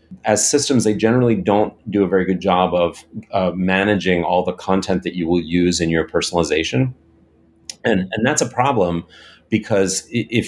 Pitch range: 85-100 Hz